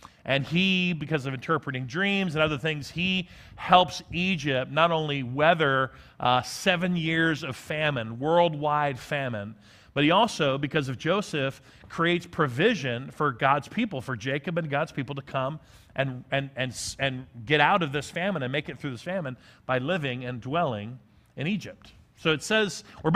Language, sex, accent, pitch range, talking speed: English, male, American, 135-185 Hz, 170 wpm